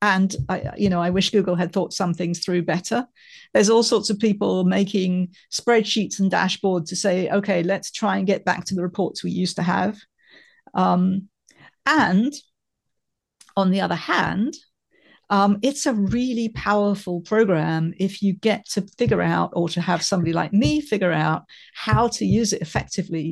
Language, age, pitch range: English, 50-69, 175-215 Hz